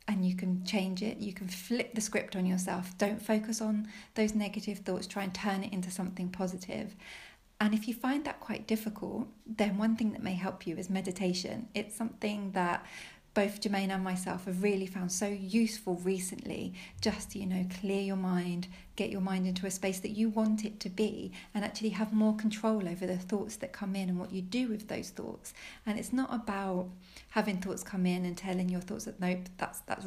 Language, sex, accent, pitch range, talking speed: English, female, British, 185-215 Hz, 210 wpm